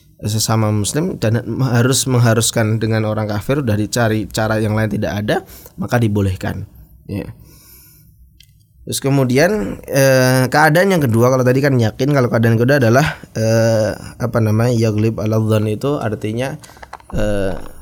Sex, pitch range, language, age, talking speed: male, 110-130 Hz, Indonesian, 20-39, 140 wpm